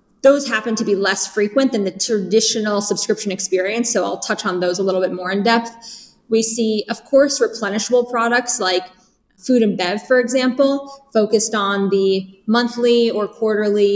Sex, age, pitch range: female, 20-39, 200-235 Hz